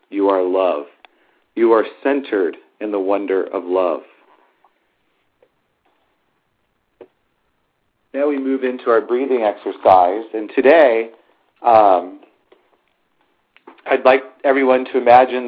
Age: 40-59